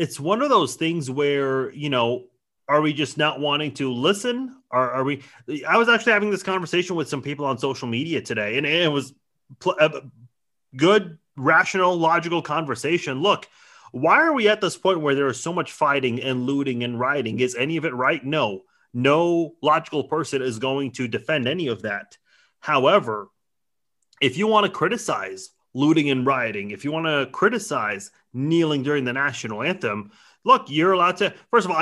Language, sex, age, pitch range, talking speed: English, male, 30-49, 130-170 Hz, 185 wpm